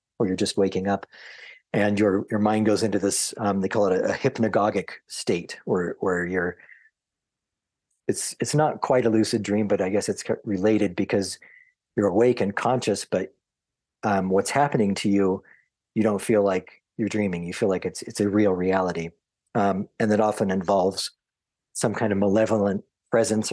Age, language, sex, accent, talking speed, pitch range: 40-59, English, male, American, 180 wpm, 95-110 Hz